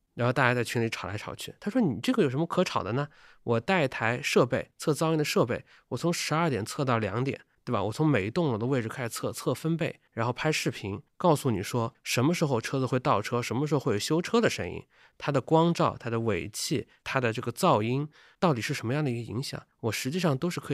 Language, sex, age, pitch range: Chinese, male, 20-39, 115-150 Hz